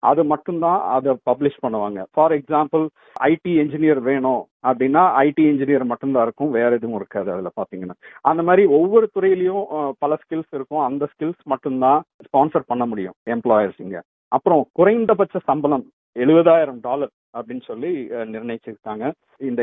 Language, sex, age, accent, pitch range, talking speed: Tamil, male, 50-69, native, 120-165 Hz, 125 wpm